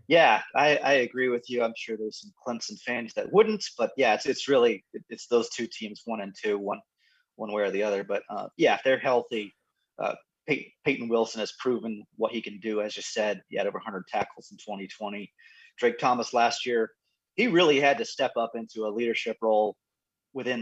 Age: 30-49